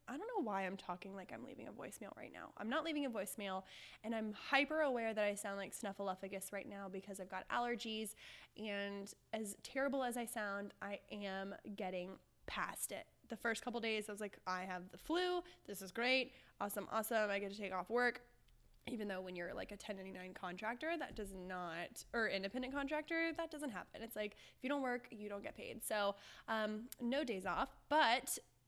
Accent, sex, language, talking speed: American, female, English, 205 wpm